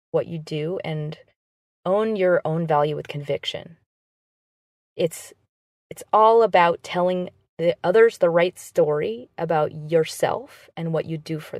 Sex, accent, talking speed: female, American, 140 wpm